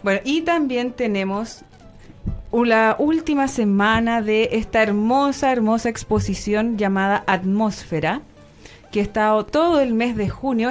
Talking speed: 125 wpm